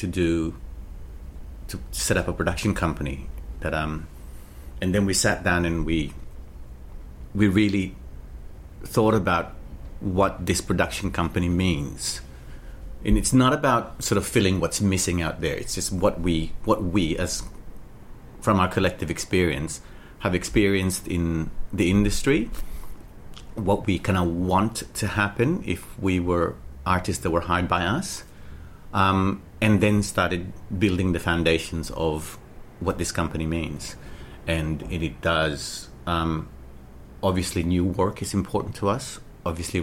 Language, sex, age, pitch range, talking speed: English, male, 40-59, 80-105 Hz, 140 wpm